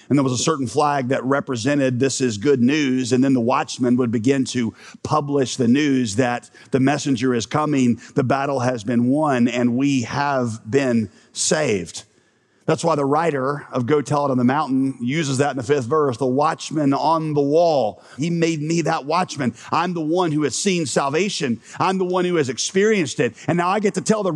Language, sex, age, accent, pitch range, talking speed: English, male, 40-59, American, 135-215 Hz, 210 wpm